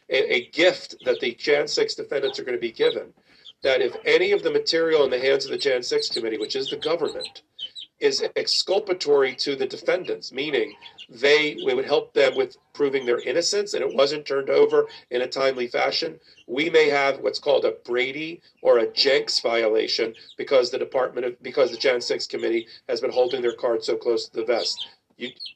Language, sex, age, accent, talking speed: English, male, 40-59, American, 200 wpm